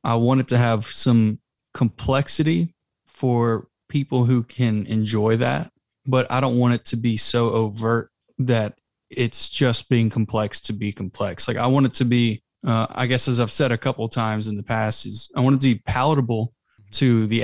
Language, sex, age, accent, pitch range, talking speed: English, male, 20-39, American, 110-130 Hz, 200 wpm